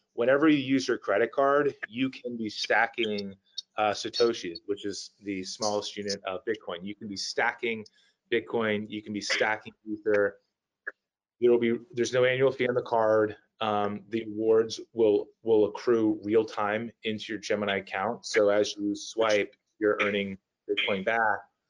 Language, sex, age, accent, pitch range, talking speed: English, male, 30-49, American, 105-125 Hz, 165 wpm